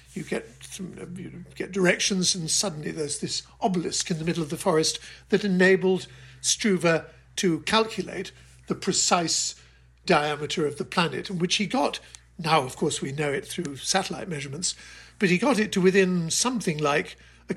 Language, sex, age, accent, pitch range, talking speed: English, male, 60-79, British, 155-190 Hz, 165 wpm